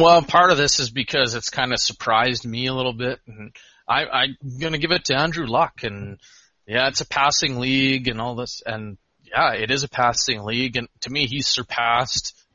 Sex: male